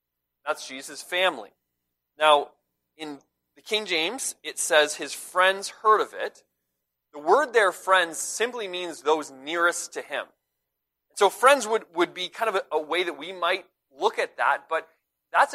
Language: English